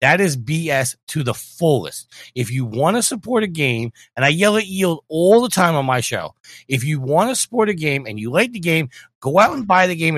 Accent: American